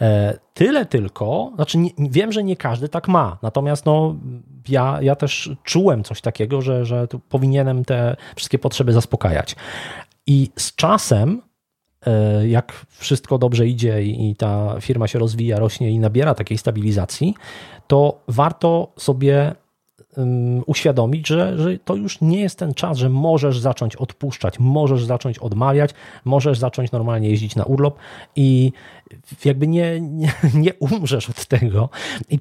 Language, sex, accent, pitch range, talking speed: Polish, male, native, 120-150 Hz, 140 wpm